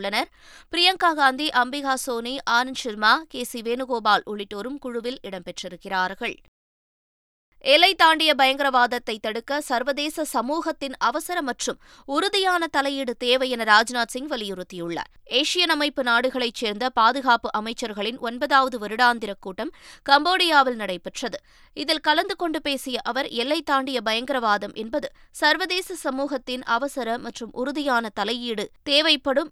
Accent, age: native, 20-39